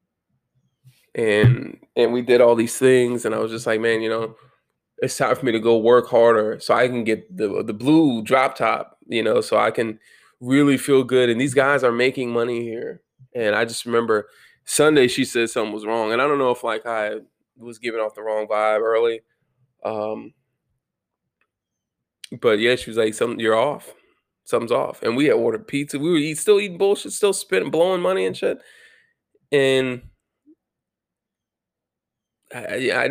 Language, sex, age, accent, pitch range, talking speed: English, male, 20-39, American, 115-145 Hz, 180 wpm